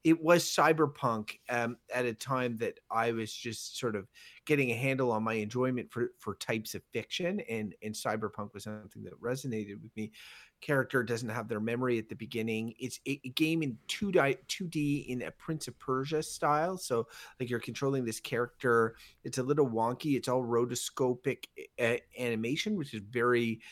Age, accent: 30-49, American